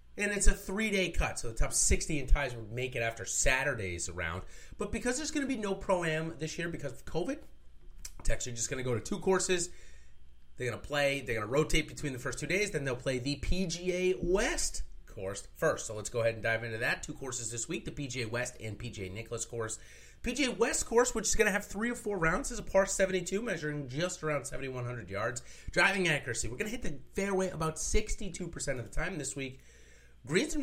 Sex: male